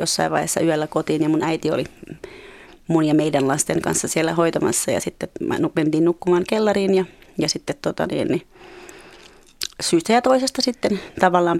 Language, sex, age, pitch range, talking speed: Finnish, female, 30-49, 165-190 Hz, 160 wpm